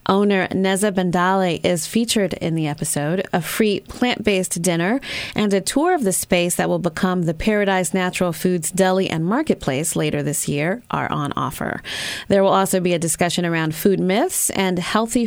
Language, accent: English, American